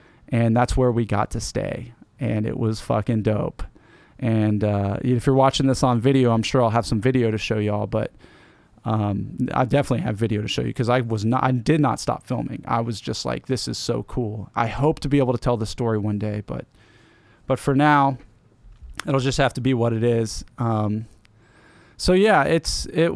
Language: English